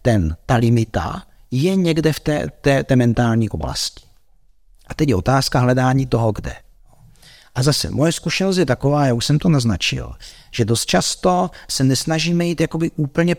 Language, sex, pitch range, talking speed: Czech, male, 100-135 Hz, 160 wpm